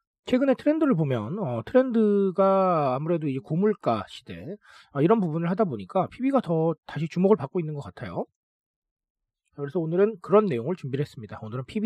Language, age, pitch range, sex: Korean, 40-59, 140-220 Hz, male